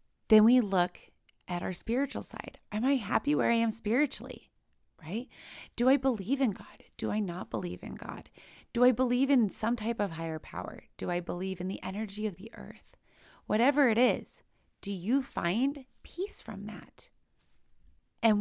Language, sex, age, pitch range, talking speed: English, female, 20-39, 195-255 Hz, 175 wpm